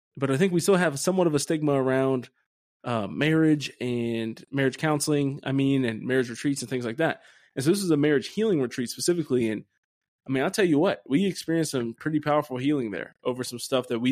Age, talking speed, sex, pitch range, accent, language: 20-39, 225 wpm, male, 115-135 Hz, American, English